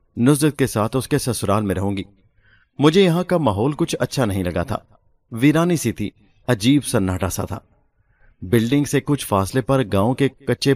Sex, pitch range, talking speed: male, 100-130 Hz, 185 wpm